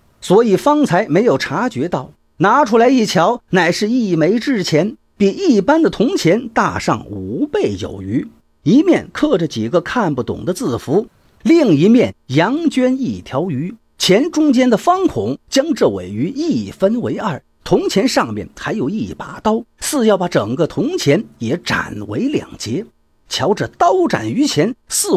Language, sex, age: Chinese, male, 50-69